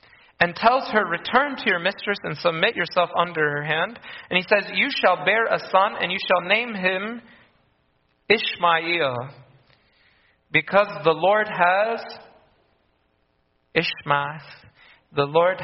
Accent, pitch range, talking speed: American, 150-205 Hz, 130 wpm